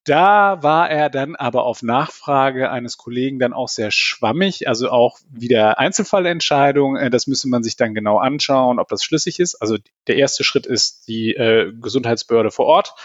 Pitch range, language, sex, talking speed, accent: 120-150 Hz, German, male, 175 wpm, German